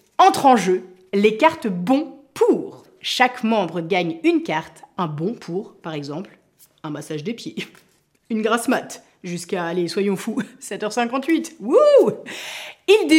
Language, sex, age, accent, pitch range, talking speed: French, female, 30-49, French, 200-310 Hz, 140 wpm